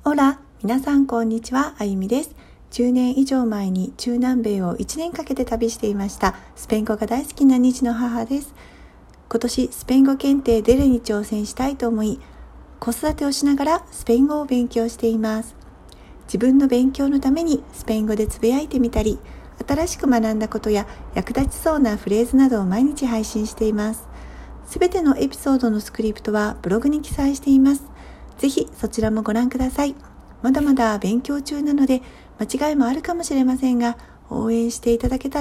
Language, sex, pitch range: Japanese, female, 215-275 Hz